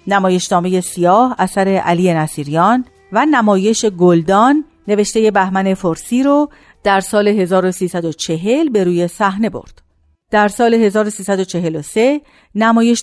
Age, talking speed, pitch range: 50-69, 110 wpm, 170-235 Hz